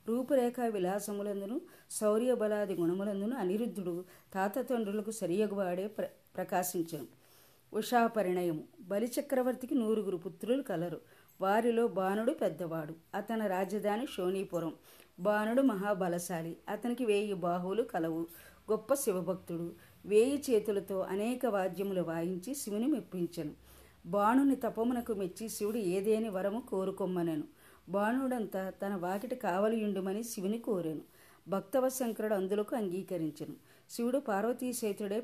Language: Telugu